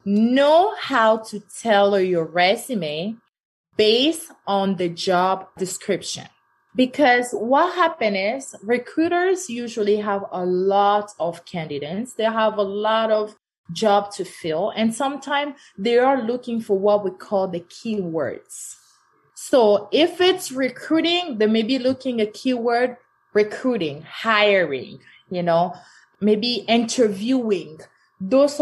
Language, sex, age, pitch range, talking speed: English, female, 20-39, 185-255 Hz, 120 wpm